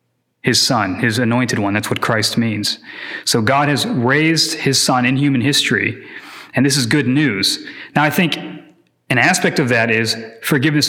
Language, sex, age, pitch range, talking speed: English, male, 30-49, 120-145 Hz, 175 wpm